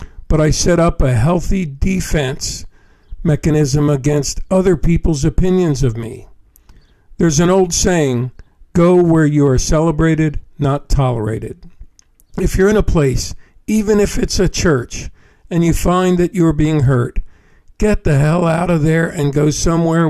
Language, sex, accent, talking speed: English, male, American, 150 wpm